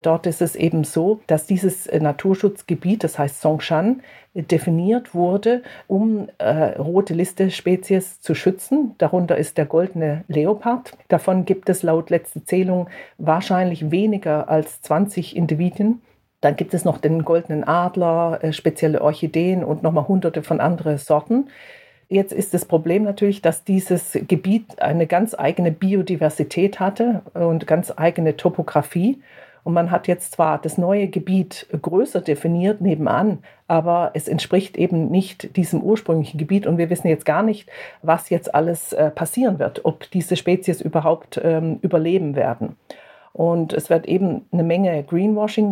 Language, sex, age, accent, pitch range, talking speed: German, female, 50-69, German, 160-190 Hz, 145 wpm